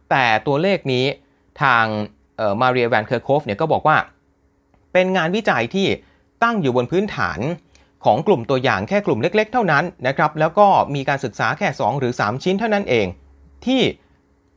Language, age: Thai, 30-49